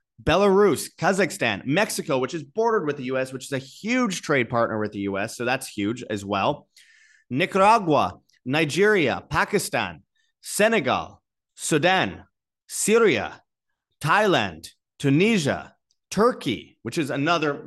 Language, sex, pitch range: English, male, 115-170 Hz